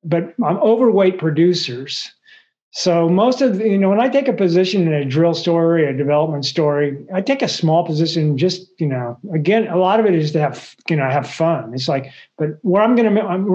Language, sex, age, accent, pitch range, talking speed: English, male, 50-69, American, 150-180 Hz, 215 wpm